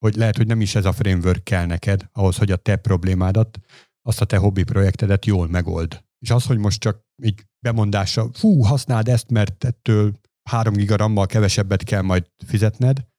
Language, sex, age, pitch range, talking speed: Hungarian, male, 50-69, 95-120 Hz, 185 wpm